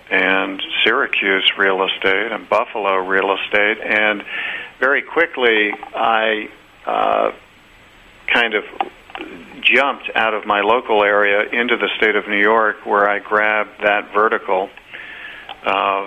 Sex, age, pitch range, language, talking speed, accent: male, 50-69, 100-110 Hz, English, 125 wpm, American